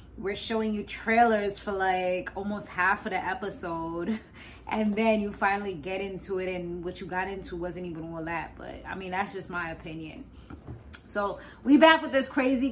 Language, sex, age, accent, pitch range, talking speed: English, female, 20-39, American, 175-220 Hz, 190 wpm